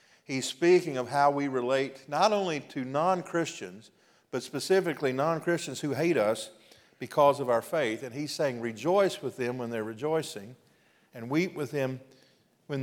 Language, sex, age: English, male, 50-69